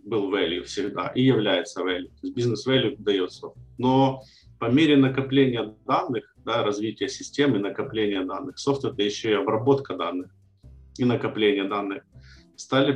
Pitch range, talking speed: 105-135 Hz, 140 wpm